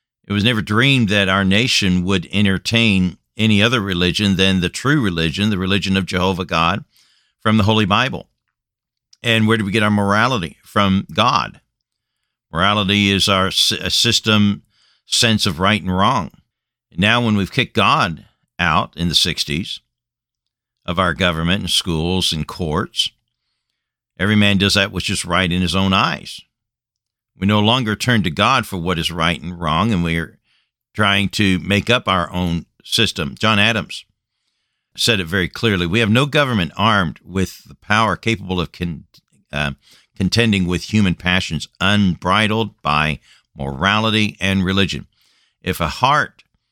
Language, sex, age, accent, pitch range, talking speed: English, male, 50-69, American, 90-110 Hz, 155 wpm